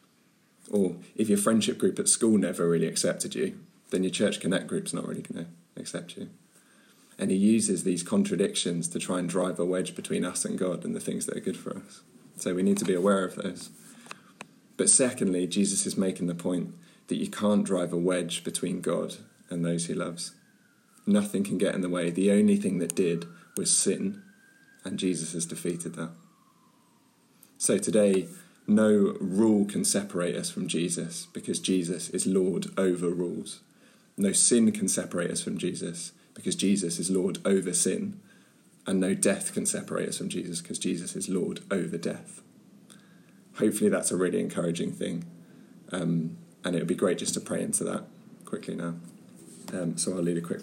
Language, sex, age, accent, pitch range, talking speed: English, male, 20-39, British, 85-110 Hz, 185 wpm